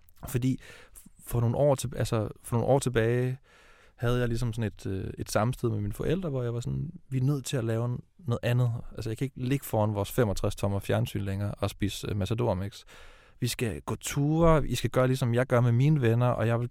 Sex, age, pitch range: male, 20-39, 110-135 Hz